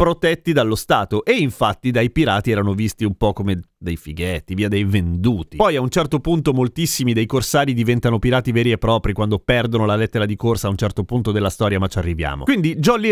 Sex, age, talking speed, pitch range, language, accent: male, 30-49, 215 wpm, 110-160 Hz, Italian, native